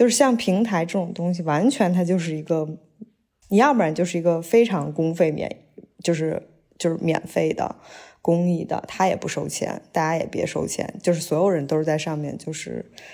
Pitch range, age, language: 155-200 Hz, 20-39, Chinese